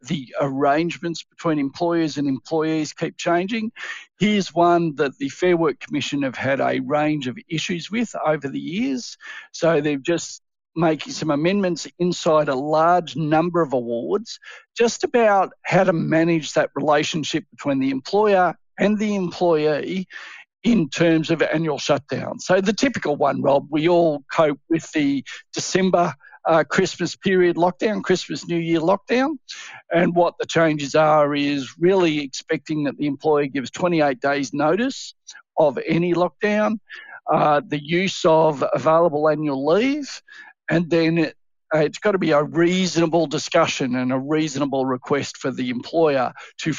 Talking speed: 150 wpm